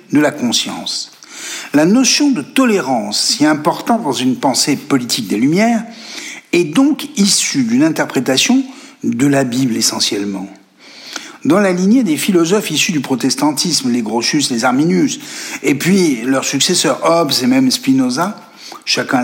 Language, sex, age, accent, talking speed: French, male, 60-79, French, 140 wpm